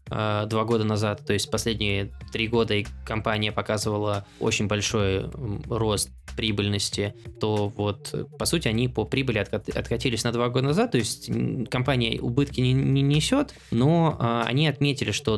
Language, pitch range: Russian, 105-125 Hz